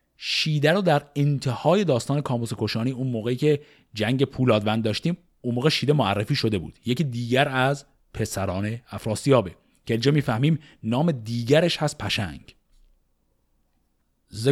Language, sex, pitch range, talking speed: Persian, male, 100-145 Hz, 130 wpm